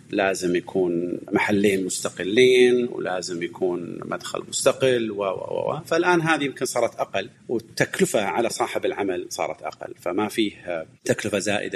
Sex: male